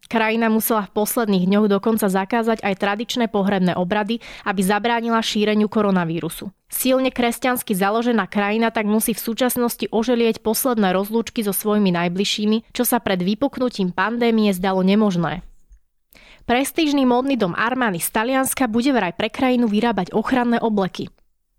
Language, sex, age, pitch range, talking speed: Slovak, female, 20-39, 205-245 Hz, 135 wpm